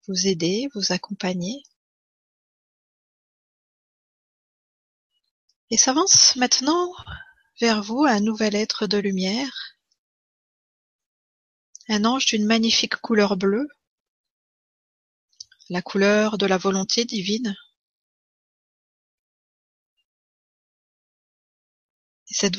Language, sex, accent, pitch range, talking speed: French, female, French, 195-255 Hz, 70 wpm